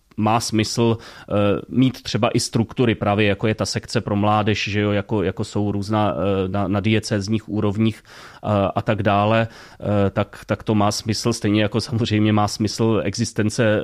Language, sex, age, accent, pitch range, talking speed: Czech, male, 30-49, native, 105-120 Hz, 165 wpm